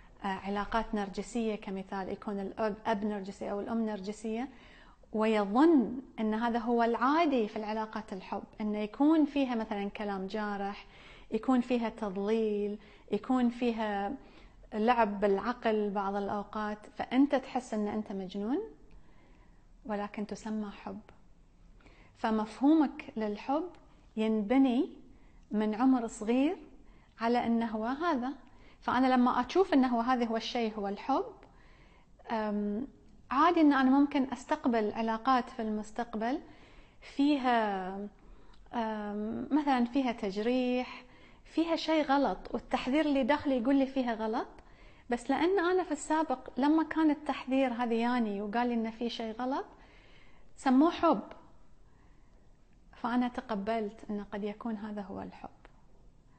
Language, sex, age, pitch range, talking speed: English, female, 30-49, 210-265 Hz, 115 wpm